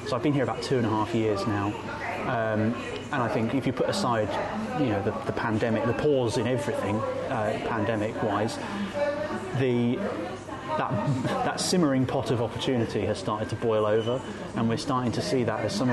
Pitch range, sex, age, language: 110-125 Hz, male, 20-39, English